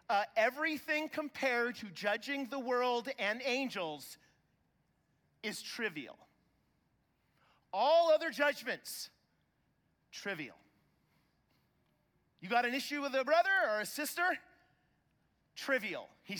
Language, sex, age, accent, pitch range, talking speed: English, male, 40-59, American, 155-210 Hz, 100 wpm